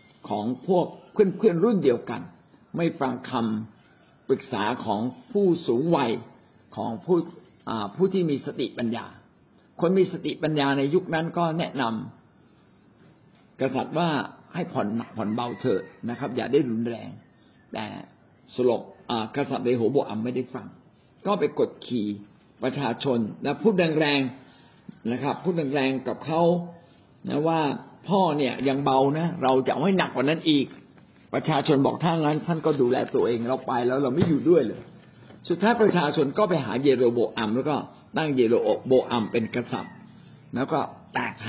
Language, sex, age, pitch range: Thai, male, 60-79, 120-160 Hz